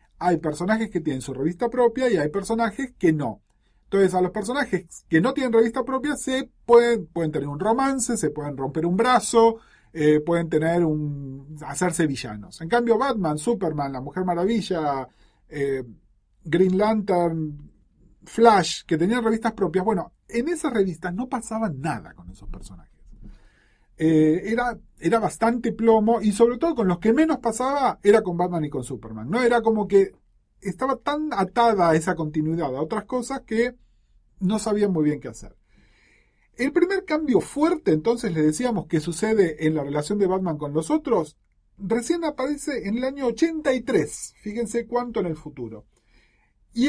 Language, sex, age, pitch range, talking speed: Spanish, male, 40-59, 150-235 Hz, 170 wpm